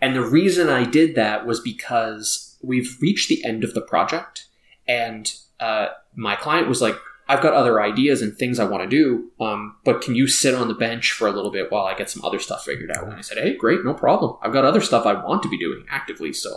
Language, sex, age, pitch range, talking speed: English, male, 20-39, 115-175 Hz, 250 wpm